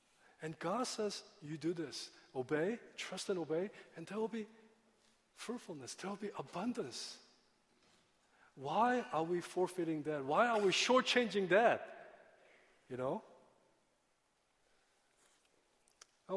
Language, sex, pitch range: Korean, male, 140-185 Hz